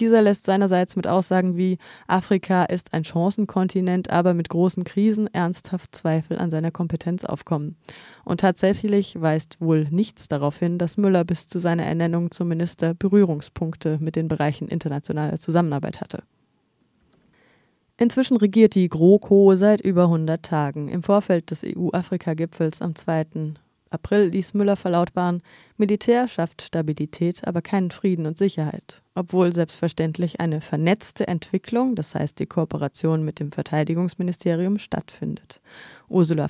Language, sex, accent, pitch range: German, female, German, 160-195 Hz